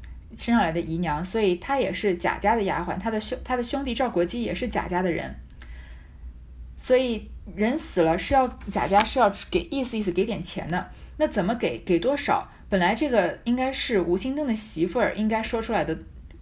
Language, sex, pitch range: Chinese, female, 185-255 Hz